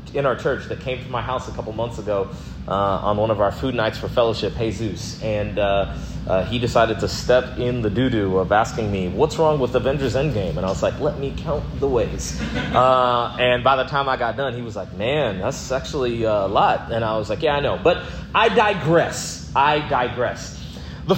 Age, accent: 30-49, American